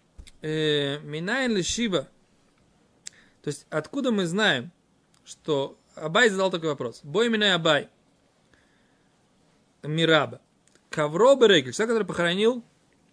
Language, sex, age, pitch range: Russian, male, 20-39, 155-210 Hz